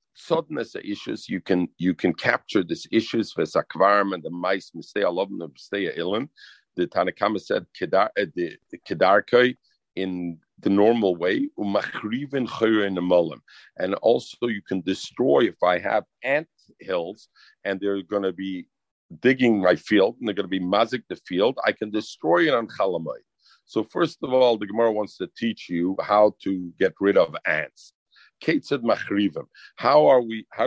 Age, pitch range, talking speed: 50-69, 95-120 Hz, 155 wpm